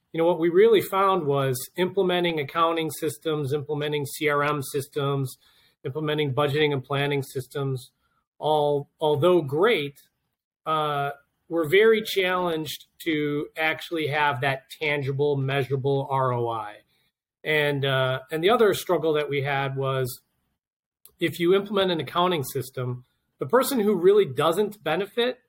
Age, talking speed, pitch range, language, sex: 40-59, 125 wpm, 140-180 Hz, English, male